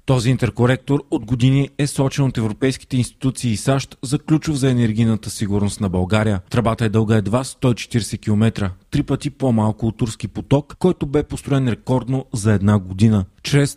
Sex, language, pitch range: male, Bulgarian, 110-140 Hz